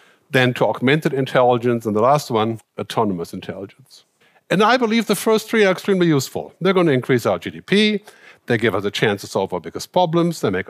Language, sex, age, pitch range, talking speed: English, male, 50-69, 120-180 Hz, 210 wpm